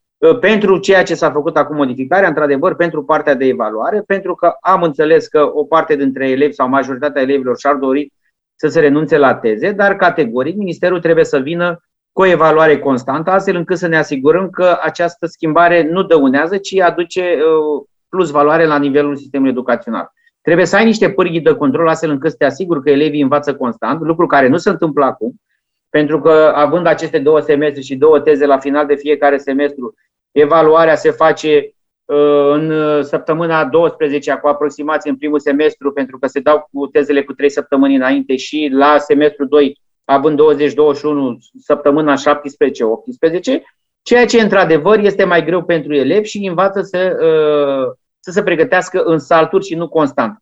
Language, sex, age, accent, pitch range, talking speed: Romanian, male, 30-49, native, 145-175 Hz, 170 wpm